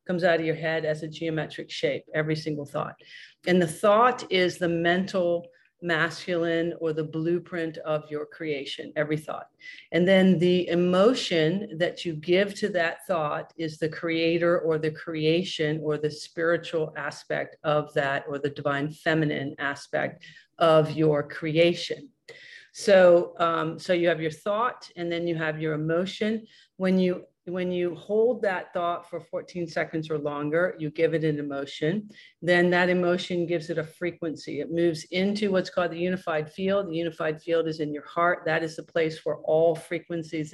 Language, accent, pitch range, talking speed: English, American, 155-180 Hz, 170 wpm